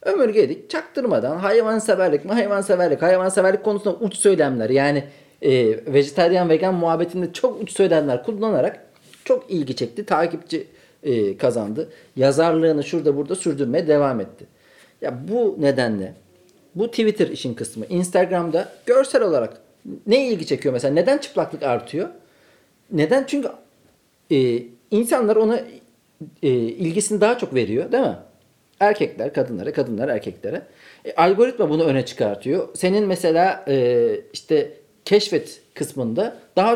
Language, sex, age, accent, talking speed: Turkish, male, 50-69, native, 120 wpm